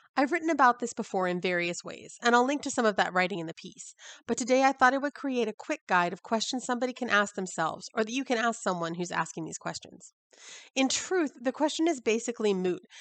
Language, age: English, 30-49